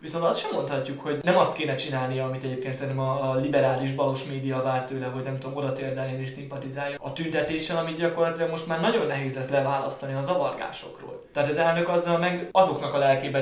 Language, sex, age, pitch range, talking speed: Hungarian, male, 20-39, 135-150 Hz, 195 wpm